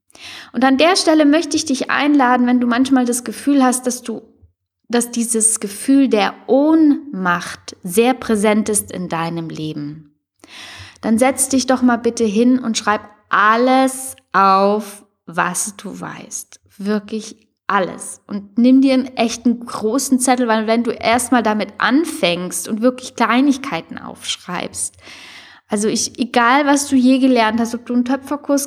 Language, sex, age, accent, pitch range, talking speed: German, female, 10-29, German, 215-265 Hz, 150 wpm